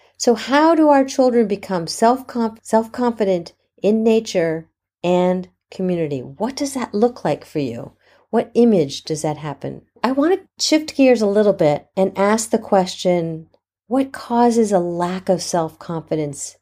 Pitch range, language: 175-225 Hz, English